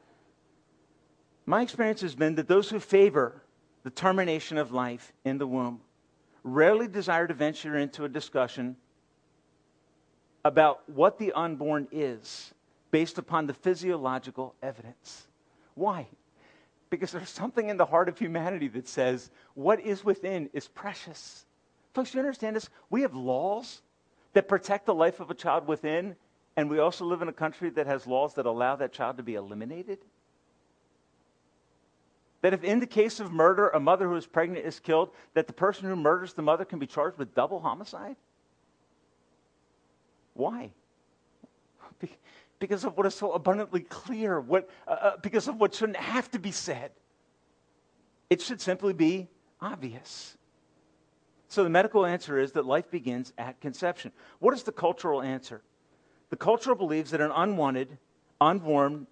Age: 50-69